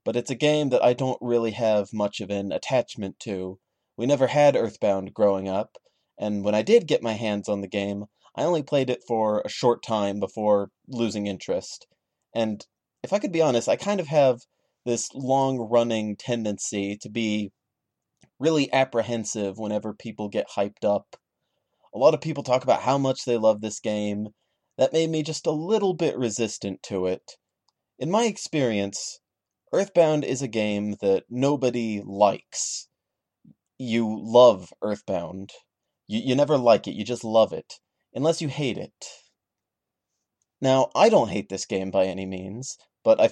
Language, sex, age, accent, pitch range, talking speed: English, male, 30-49, American, 105-130 Hz, 170 wpm